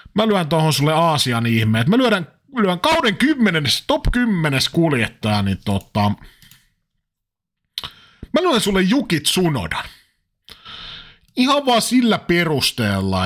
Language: Finnish